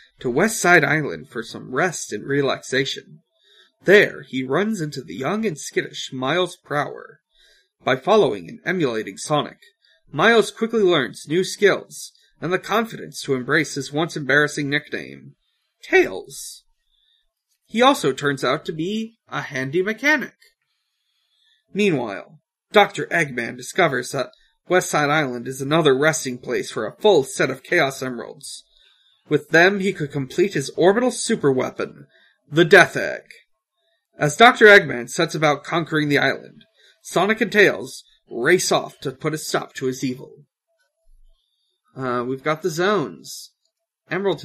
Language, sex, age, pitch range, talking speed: English, male, 30-49, 140-210 Hz, 140 wpm